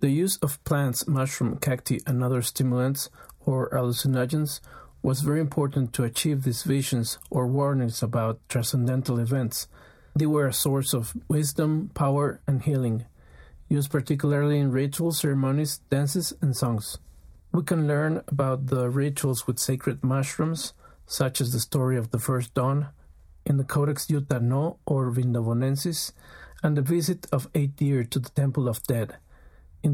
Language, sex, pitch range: English, male, 125-145 Hz